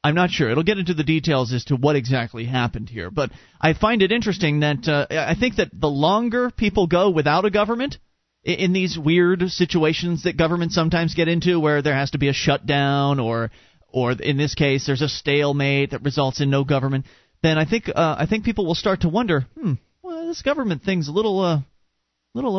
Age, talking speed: 30-49, 215 wpm